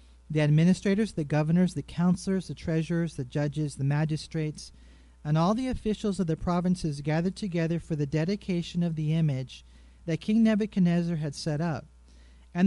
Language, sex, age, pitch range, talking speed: English, male, 40-59, 140-190 Hz, 160 wpm